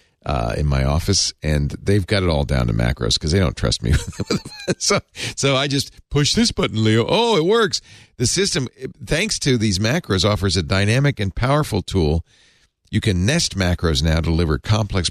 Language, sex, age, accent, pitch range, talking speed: English, male, 50-69, American, 90-120 Hz, 190 wpm